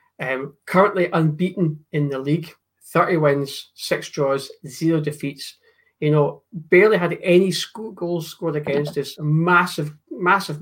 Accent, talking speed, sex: British, 135 wpm, male